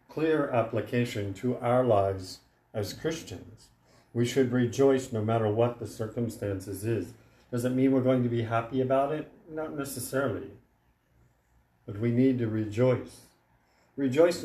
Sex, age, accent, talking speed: male, 50-69, American, 140 wpm